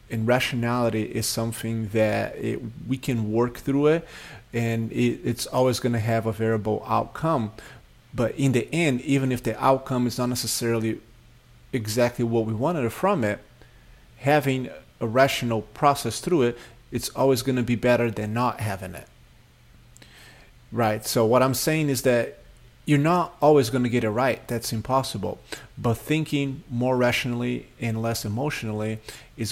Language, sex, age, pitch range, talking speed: English, male, 30-49, 110-125 Hz, 155 wpm